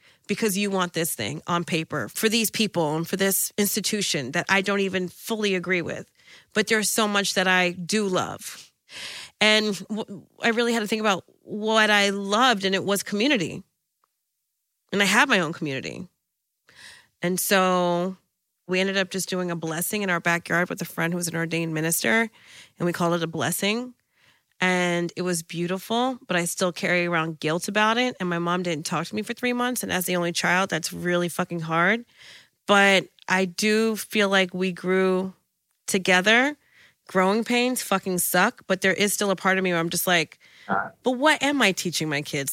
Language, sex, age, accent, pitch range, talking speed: English, female, 30-49, American, 175-215 Hz, 195 wpm